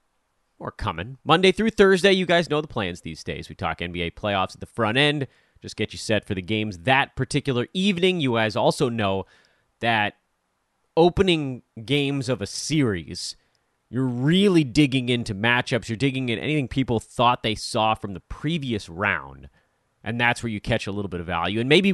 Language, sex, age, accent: English, male, 30-49, American